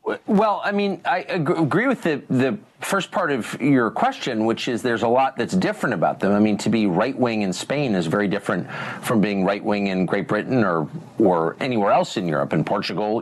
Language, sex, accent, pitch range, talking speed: English, male, American, 105-150 Hz, 220 wpm